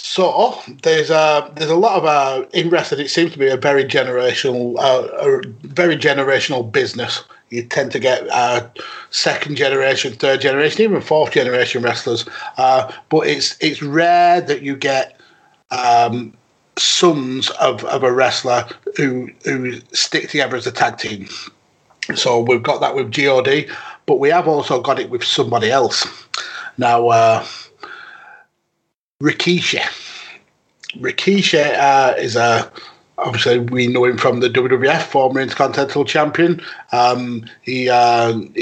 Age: 30-49